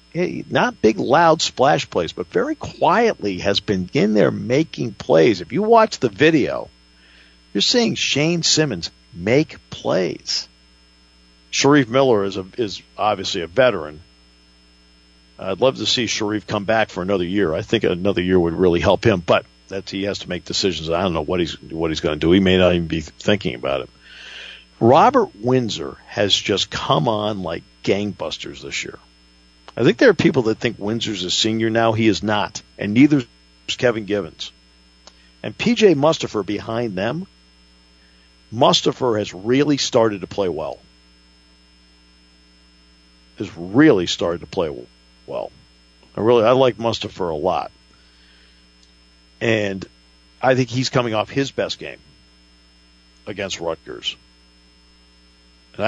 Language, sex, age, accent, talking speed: English, male, 50-69, American, 150 wpm